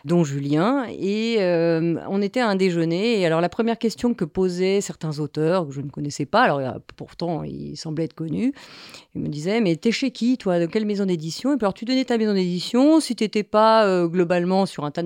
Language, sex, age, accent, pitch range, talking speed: French, female, 30-49, French, 160-210 Hz, 235 wpm